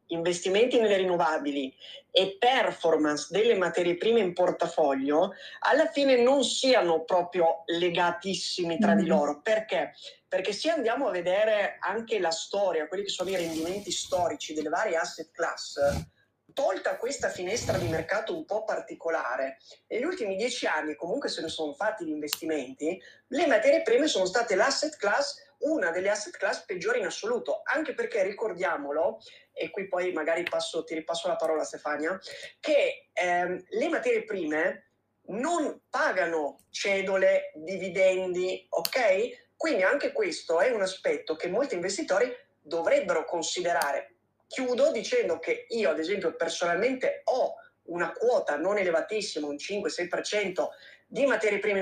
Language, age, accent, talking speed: Italian, 30-49, native, 145 wpm